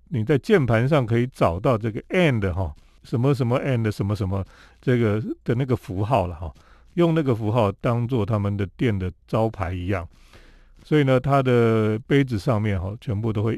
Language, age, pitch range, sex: Chinese, 40-59, 105-140 Hz, male